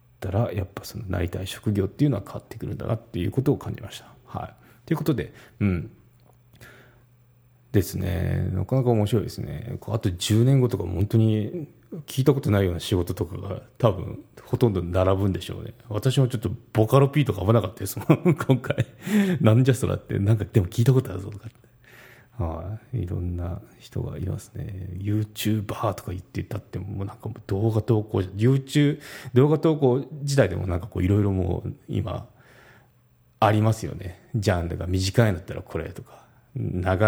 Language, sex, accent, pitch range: Japanese, male, native, 95-125 Hz